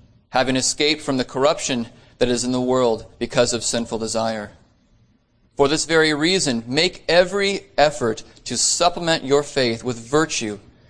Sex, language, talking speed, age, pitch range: male, English, 150 wpm, 30-49, 115-150 Hz